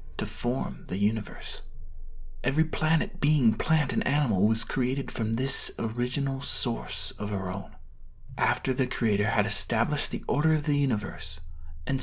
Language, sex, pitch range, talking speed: English, male, 100-145 Hz, 150 wpm